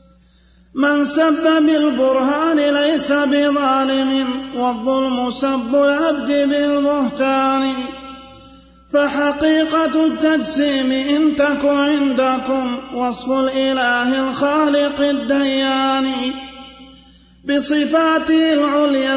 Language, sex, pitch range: Arabic, male, 265-285 Hz